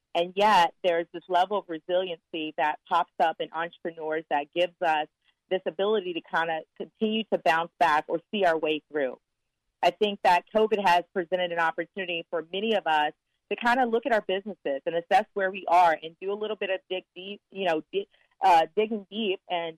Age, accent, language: 40-59, American, English